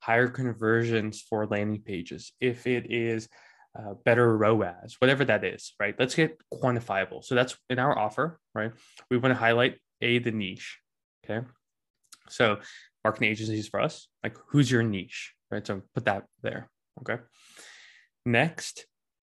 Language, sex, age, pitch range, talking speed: English, male, 20-39, 110-130 Hz, 150 wpm